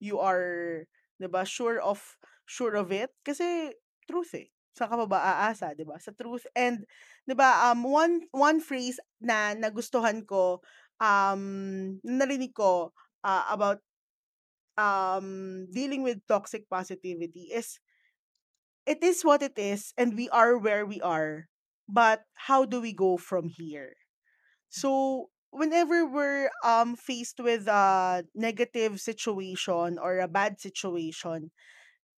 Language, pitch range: Filipino, 195-270 Hz